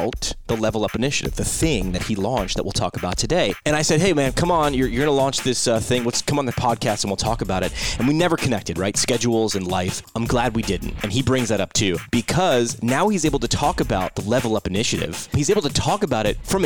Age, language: 30-49, English